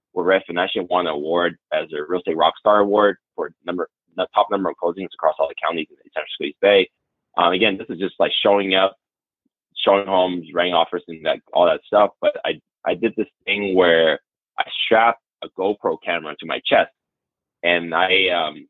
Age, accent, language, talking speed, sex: 20-39, American, English, 200 wpm, male